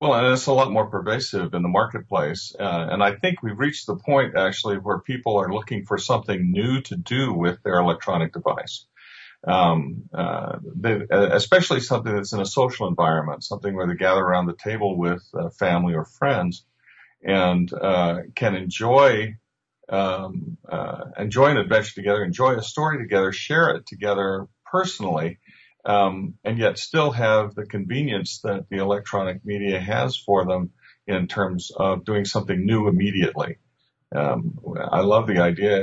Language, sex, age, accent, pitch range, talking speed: English, male, 50-69, American, 95-120 Hz, 160 wpm